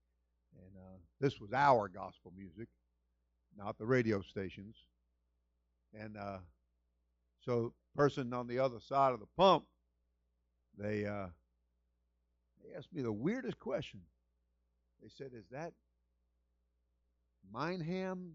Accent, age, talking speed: American, 50-69, 120 wpm